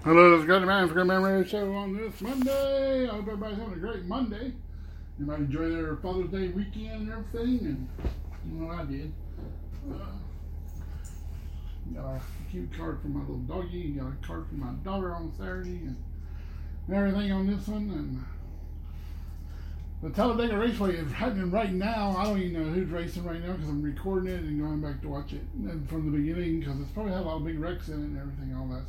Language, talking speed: English, 210 wpm